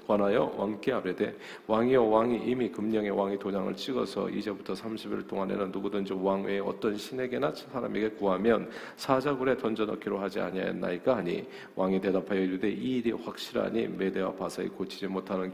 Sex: male